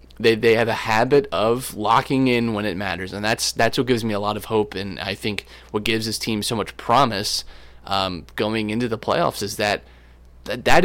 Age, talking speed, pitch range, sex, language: 20-39, 220 wpm, 100-125 Hz, male, English